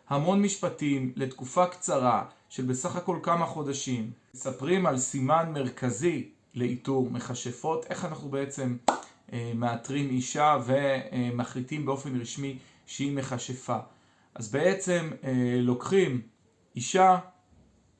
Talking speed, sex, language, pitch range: 95 wpm, male, Hebrew, 125-160 Hz